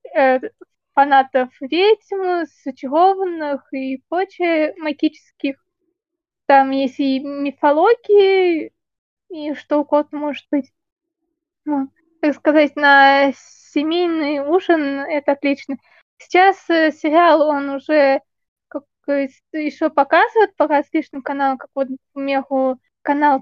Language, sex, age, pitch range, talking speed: Russian, female, 20-39, 275-330 Hz, 95 wpm